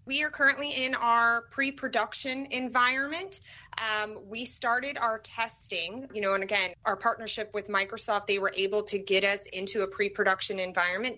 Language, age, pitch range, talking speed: English, 20-39, 180-225 Hz, 160 wpm